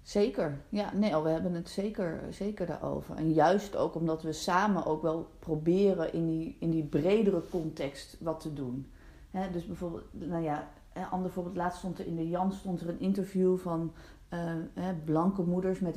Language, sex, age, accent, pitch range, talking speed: Dutch, female, 40-59, Dutch, 160-190 Hz, 175 wpm